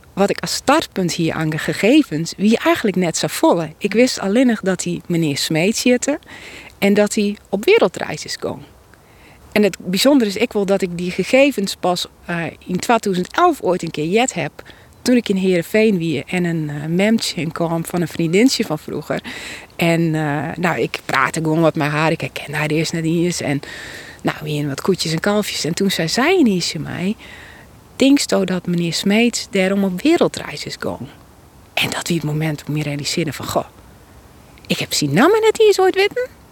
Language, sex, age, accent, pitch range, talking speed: Dutch, female, 40-59, Dutch, 160-225 Hz, 205 wpm